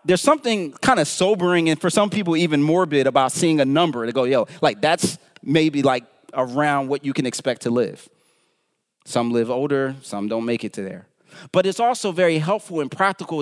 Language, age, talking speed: English, 30-49, 200 wpm